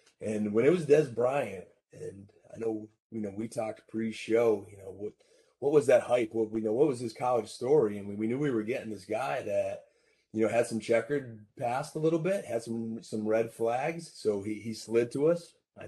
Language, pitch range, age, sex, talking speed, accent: English, 110-140 Hz, 30-49, male, 230 wpm, American